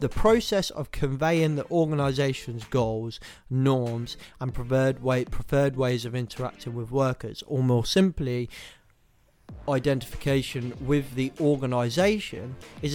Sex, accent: male, British